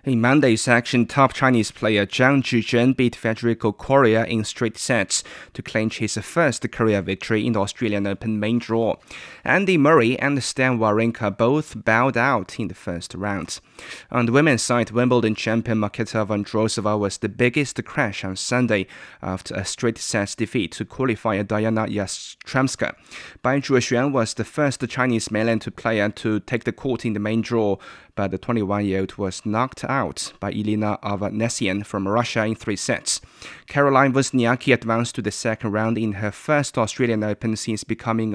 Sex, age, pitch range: male, 20-39, 110-130 Hz